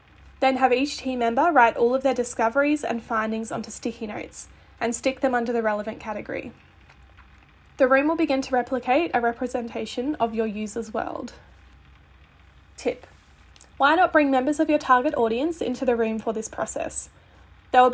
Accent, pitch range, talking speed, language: Australian, 225-270 Hz, 170 wpm, English